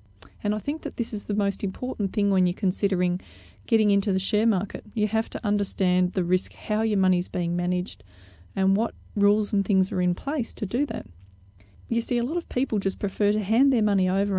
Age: 30-49